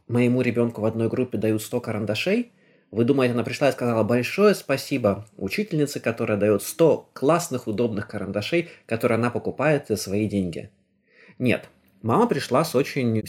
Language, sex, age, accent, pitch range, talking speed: Russian, male, 20-39, native, 105-140 Hz, 155 wpm